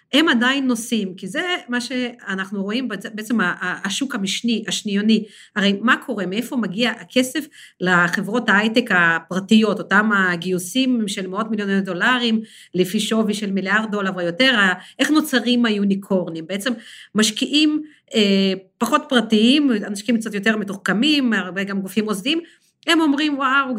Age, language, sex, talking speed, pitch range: 40-59, Hebrew, female, 130 wpm, 205-275 Hz